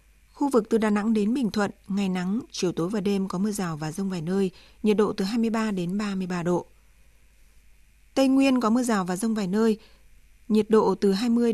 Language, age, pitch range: Vietnamese, 20-39, 180-220 Hz